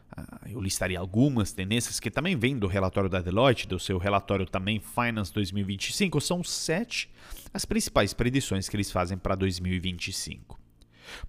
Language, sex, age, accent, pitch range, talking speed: Portuguese, male, 30-49, Brazilian, 95-150 Hz, 145 wpm